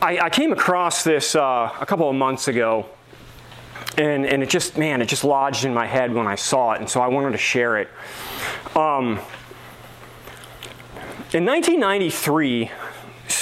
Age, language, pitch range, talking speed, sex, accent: 30-49, English, 115-155 Hz, 150 wpm, male, American